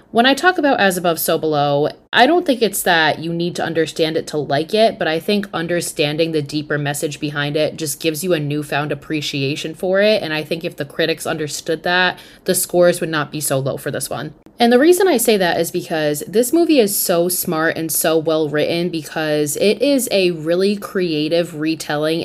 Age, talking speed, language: 20-39, 215 wpm, English